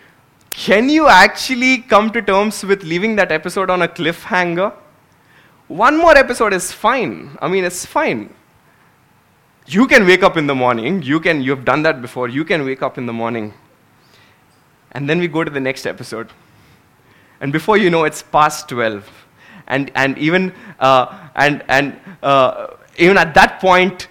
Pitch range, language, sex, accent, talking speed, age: 150-200 Hz, English, male, Indian, 170 wpm, 20-39